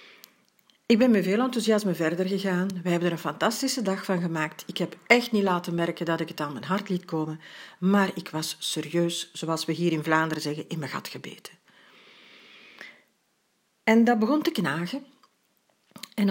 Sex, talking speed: female, 180 wpm